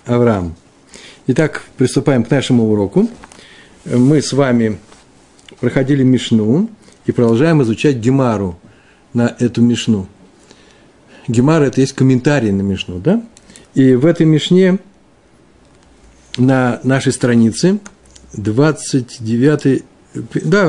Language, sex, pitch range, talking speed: Russian, male, 120-160 Hz, 100 wpm